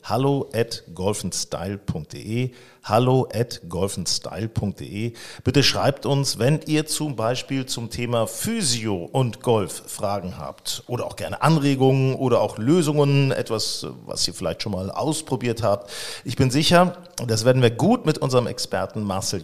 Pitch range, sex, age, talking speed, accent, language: 110-140 Hz, male, 50-69, 140 wpm, German, German